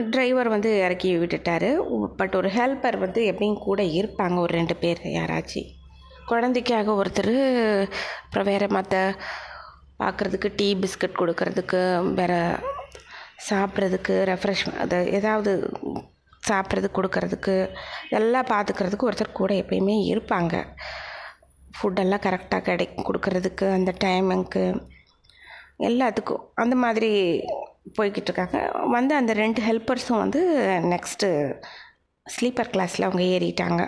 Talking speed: 100 wpm